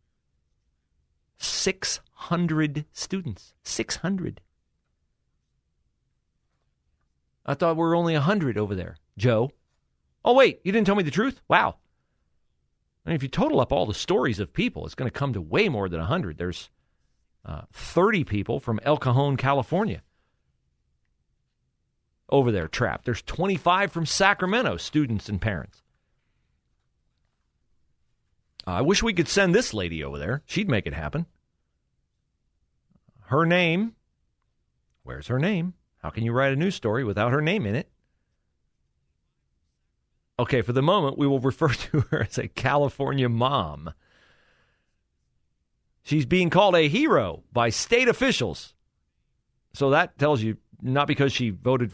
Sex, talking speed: male, 140 wpm